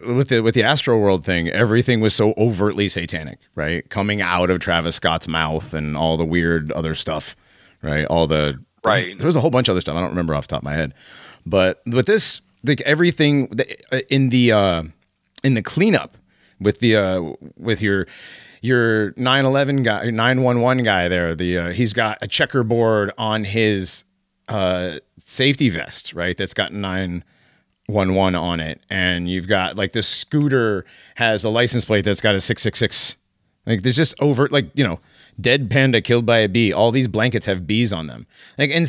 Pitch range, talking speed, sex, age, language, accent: 90-120 Hz, 190 wpm, male, 30-49, English, American